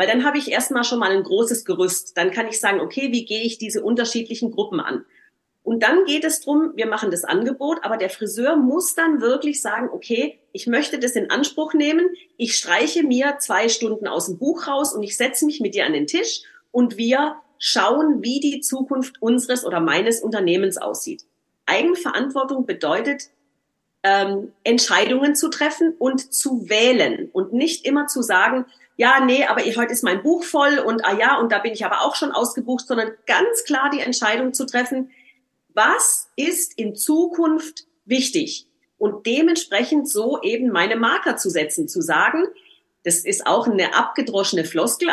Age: 40-59